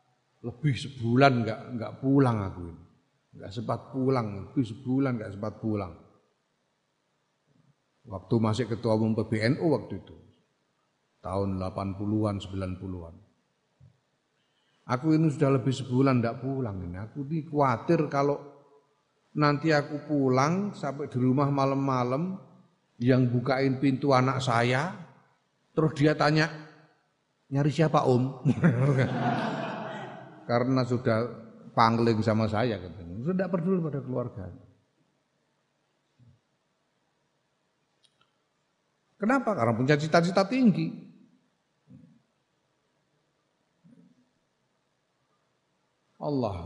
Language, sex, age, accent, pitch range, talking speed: Indonesian, male, 40-59, native, 115-165 Hz, 90 wpm